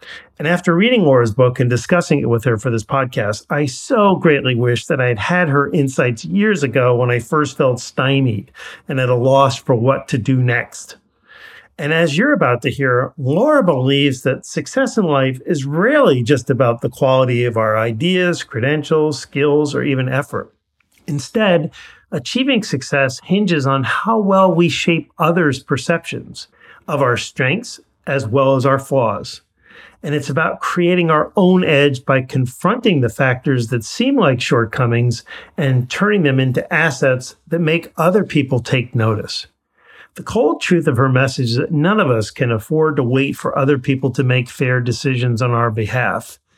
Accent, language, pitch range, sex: American, English, 125-160 Hz, male